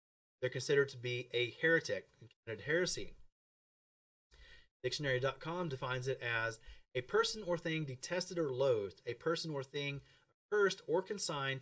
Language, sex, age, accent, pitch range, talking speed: English, male, 30-49, American, 125-165 Hz, 135 wpm